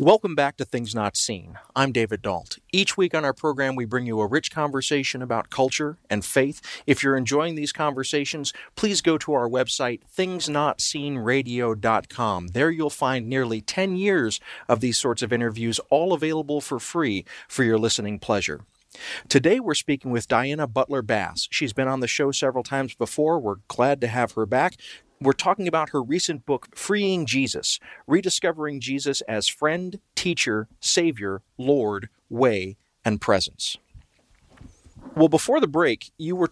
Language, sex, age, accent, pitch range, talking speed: English, male, 40-59, American, 115-155 Hz, 160 wpm